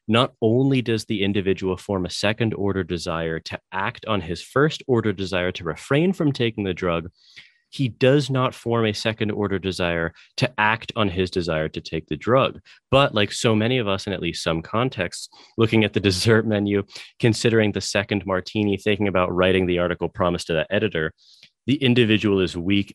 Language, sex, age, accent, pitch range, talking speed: English, male, 30-49, American, 100-135 Hz, 190 wpm